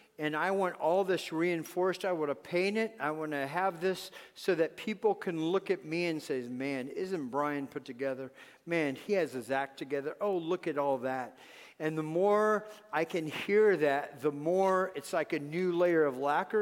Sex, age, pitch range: male, 50-69, 155-225 Hz